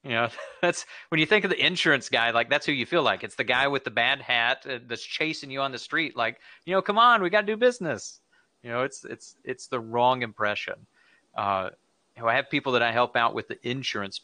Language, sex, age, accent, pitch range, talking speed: English, male, 30-49, American, 105-140 Hz, 245 wpm